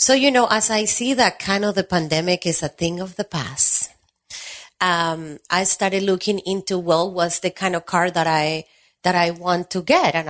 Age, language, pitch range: 30-49, English, 160-210 Hz